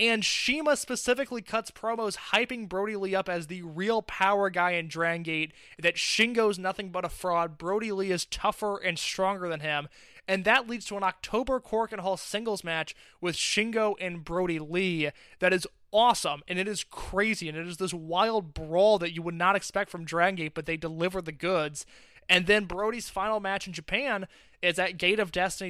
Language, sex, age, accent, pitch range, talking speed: English, male, 20-39, American, 165-195 Hz, 195 wpm